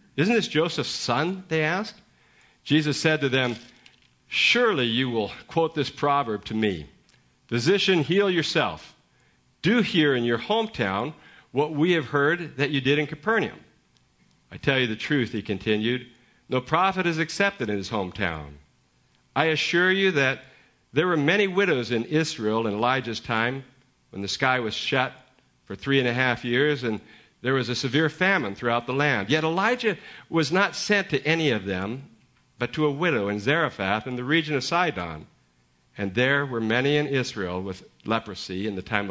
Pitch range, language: 110-155 Hz, English